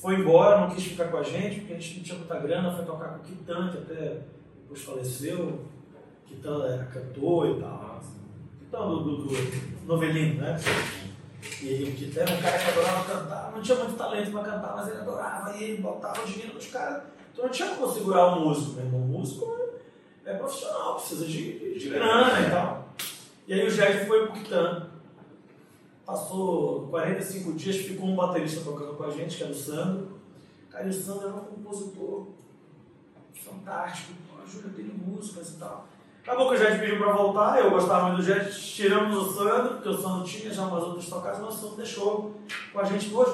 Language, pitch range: Portuguese, 150-205 Hz